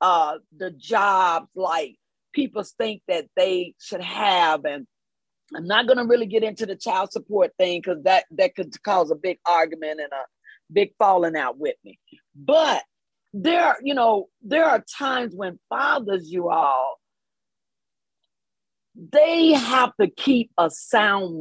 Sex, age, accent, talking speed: female, 40-59, American, 150 wpm